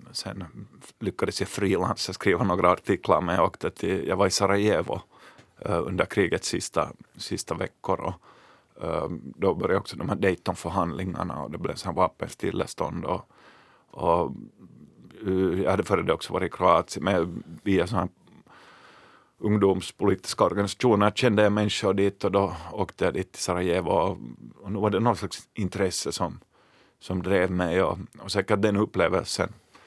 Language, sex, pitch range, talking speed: Swedish, male, 95-100 Hz, 145 wpm